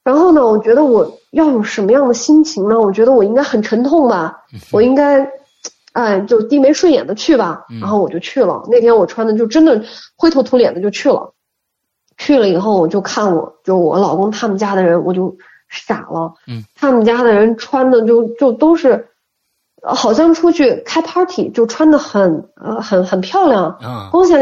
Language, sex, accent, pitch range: Chinese, female, native, 200-270 Hz